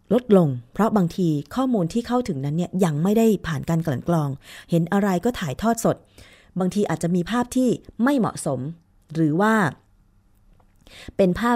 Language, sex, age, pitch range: Thai, female, 20-39, 140-205 Hz